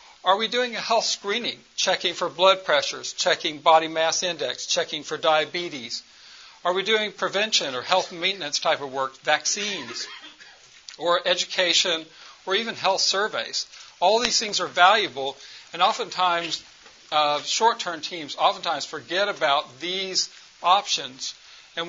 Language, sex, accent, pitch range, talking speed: English, male, American, 160-195 Hz, 135 wpm